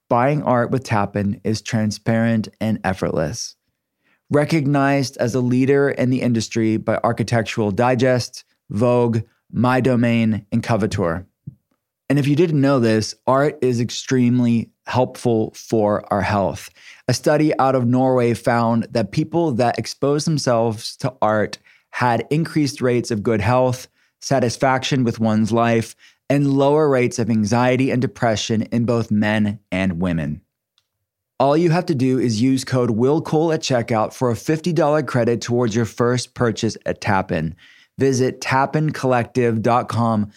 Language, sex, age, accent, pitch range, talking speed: English, male, 20-39, American, 110-130 Hz, 140 wpm